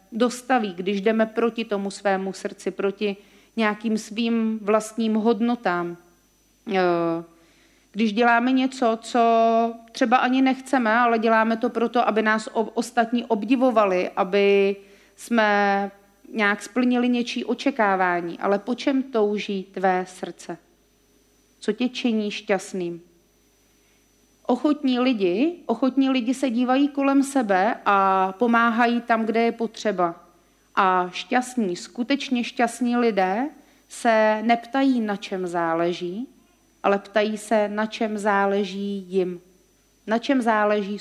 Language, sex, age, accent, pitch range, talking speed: Czech, female, 40-59, native, 200-245 Hz, 110 wpm